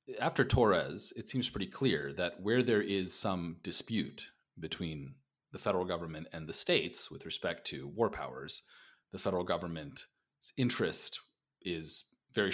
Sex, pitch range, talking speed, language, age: male, 85-125 Hz, 145 wpm, English, 30-49